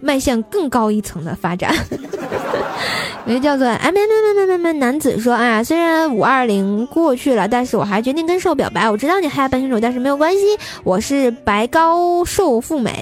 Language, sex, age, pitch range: Chinese, female, 20-39, 220-285 Hz